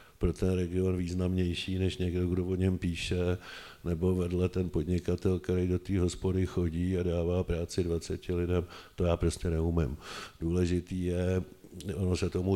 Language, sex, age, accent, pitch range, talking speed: Czech, male, 50-69, native, 85-95 Hz, 160 wpm